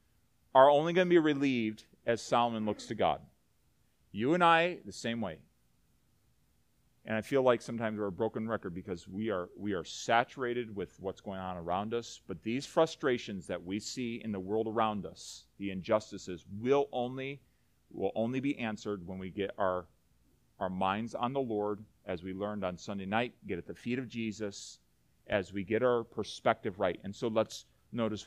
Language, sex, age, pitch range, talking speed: English, male, 40-59, 105-140 Hz, 185 wpm